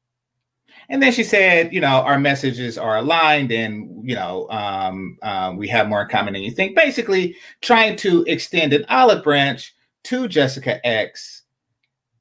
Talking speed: 160 wpm